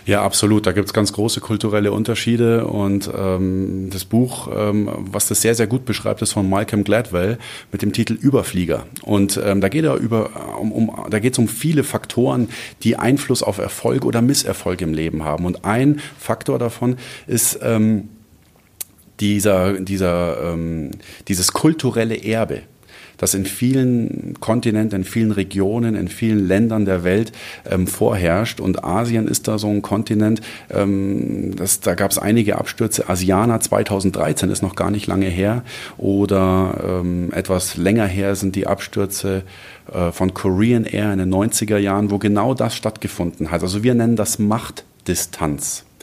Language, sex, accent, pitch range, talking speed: German, male, German, 95-115 Hz, 160 wpm